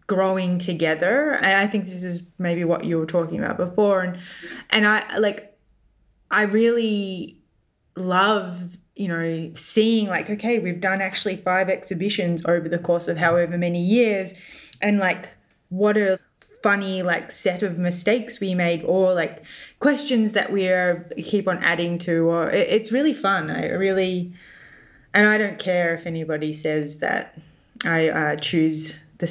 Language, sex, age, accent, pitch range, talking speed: English, female, 10-29, Australian, 170-205 Hz, 160 wpm